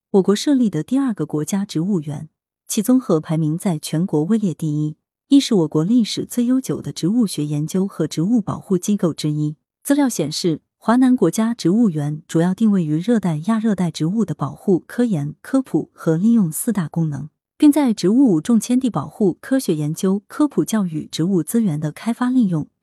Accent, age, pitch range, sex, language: native, 30-49, 155-225 Hz, female, Chinese